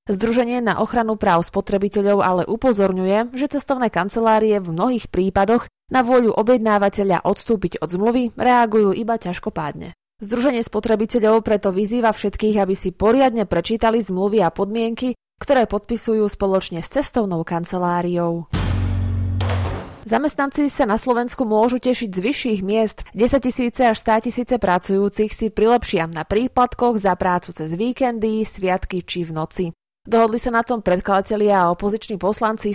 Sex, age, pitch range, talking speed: female, 20-39, 185-230 Hz, 135 wpm